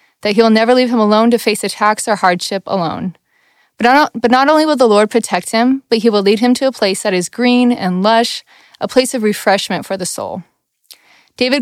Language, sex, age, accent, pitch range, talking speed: English, female, 20-39, American, 195-245 Hz, 220 wpm